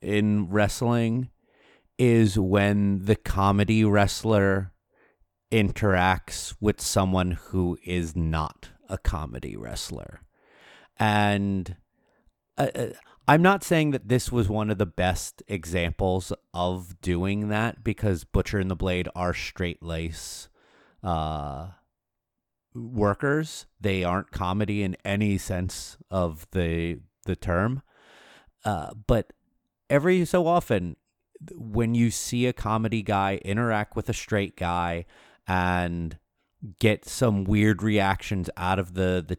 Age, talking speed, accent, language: 30-49, 115 wpm, American, English